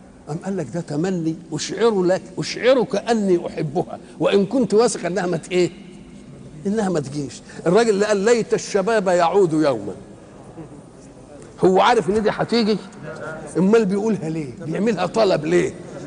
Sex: male